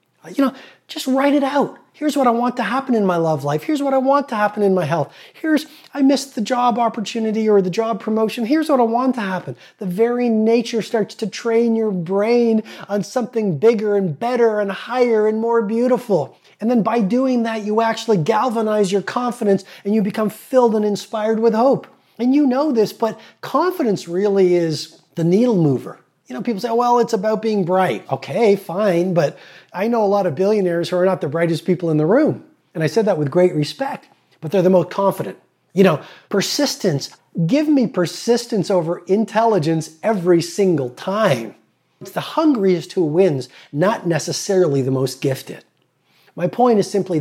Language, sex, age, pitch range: English, male, 30-49, 170-230 Hz